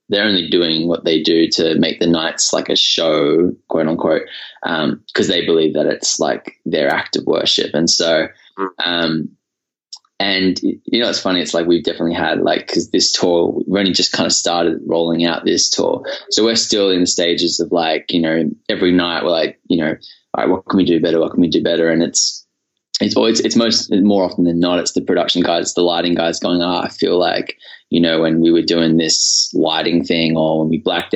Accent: Australian